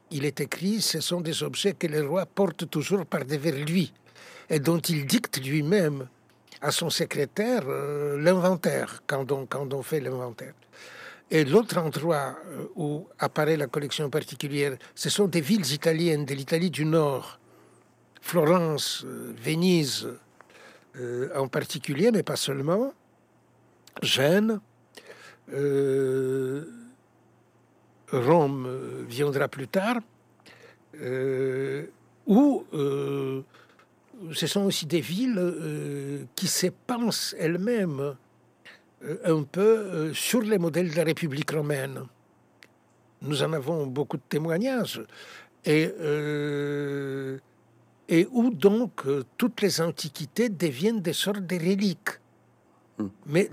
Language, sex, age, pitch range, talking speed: French, male, 60-79, 140-185 Hz, 120 wpm